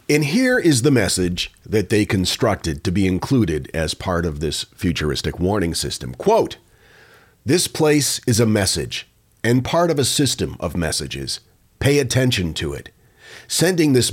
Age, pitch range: 40-59, 95-125 Hz